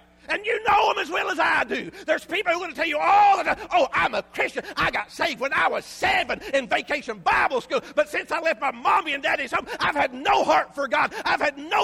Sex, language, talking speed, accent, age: male, English, 270 wpm, American, 50-69